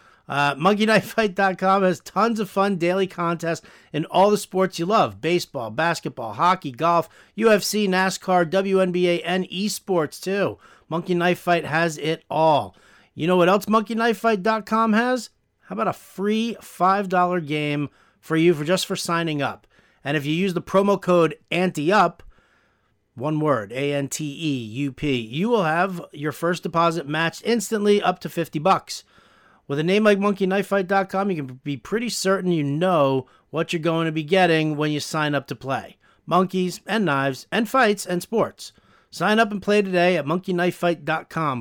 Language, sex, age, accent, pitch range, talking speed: English, male, 40-59, American, 150-195 Hz, 160 wpm